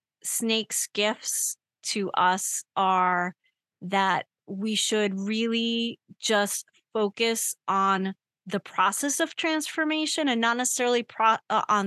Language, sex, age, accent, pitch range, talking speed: English, female, 30-49, American, 190-225 Hz, 105 wpm